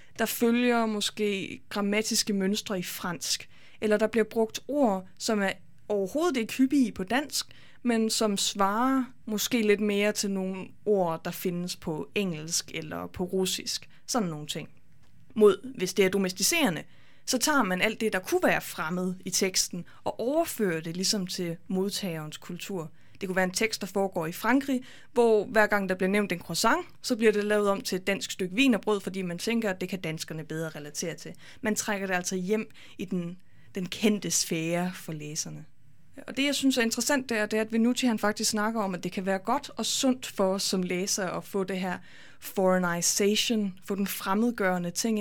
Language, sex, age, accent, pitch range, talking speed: Danish, female, 20-39, native, 185-230 Hz, 200 wpm